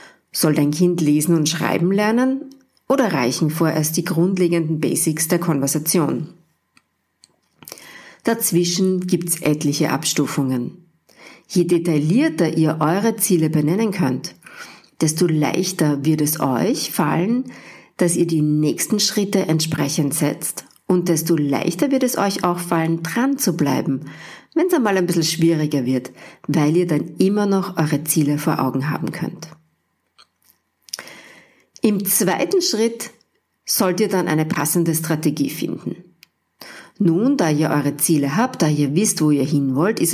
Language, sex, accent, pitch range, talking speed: English, female, German, 150-190 Hz, 140 wpm